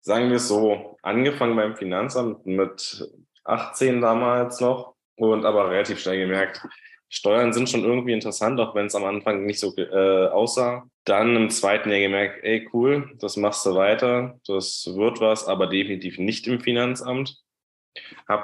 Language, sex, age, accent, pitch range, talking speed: German, male, 10-29, German, 100-115 Hz, 165 wpm